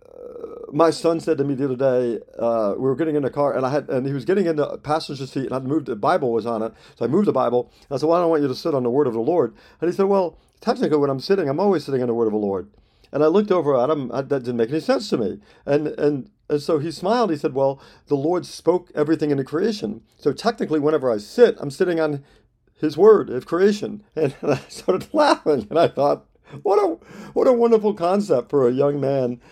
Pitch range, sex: 125-165 Hz, male